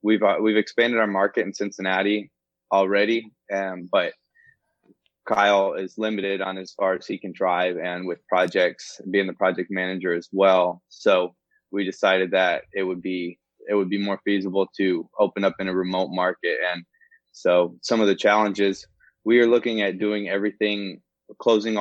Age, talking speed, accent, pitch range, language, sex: 20-39, 170 wpm, American, 95-105 Hz, English, male